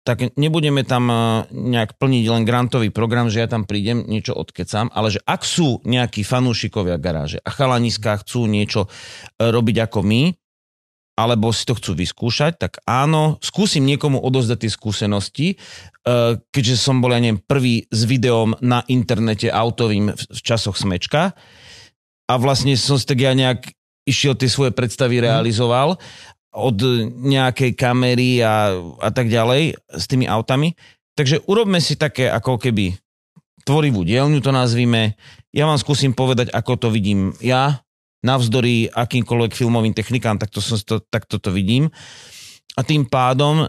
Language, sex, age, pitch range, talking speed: Slovak, male, 30-49, 110-130 Hz, 150 wpm